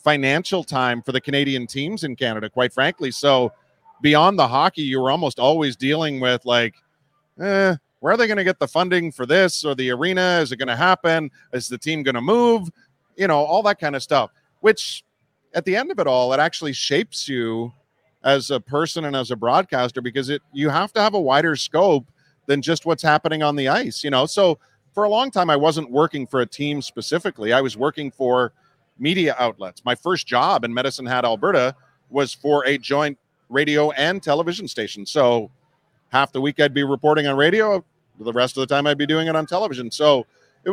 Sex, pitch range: male, 130-160 Hz